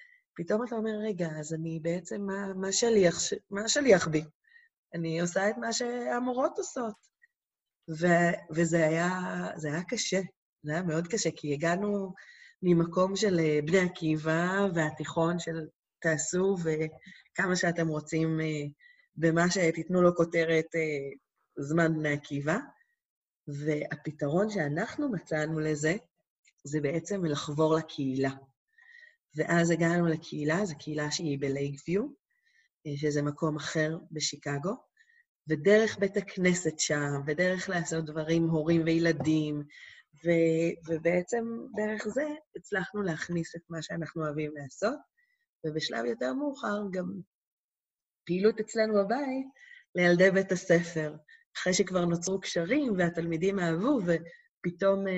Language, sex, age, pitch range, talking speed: Hebrew, female, 30-49, 160-205 Hz, 110 wpm